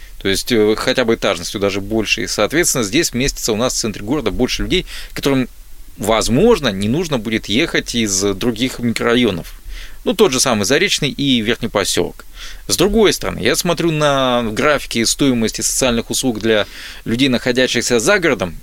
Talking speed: 160 wpm